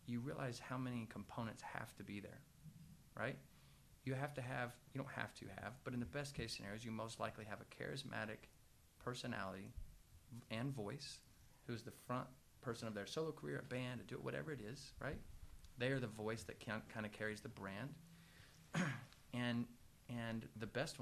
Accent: American